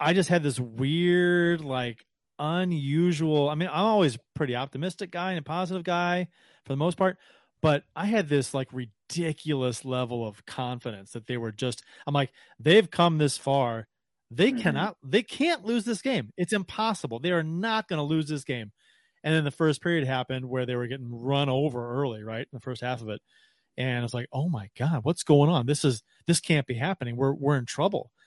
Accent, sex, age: American, male, 30-49